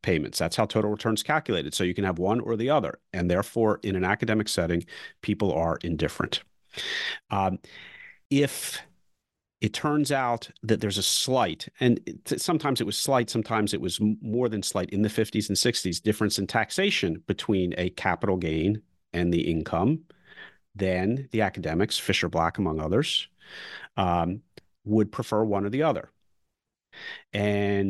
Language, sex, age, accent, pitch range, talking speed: English, male, 40-59, American, 90-120 Hz, 155 wpm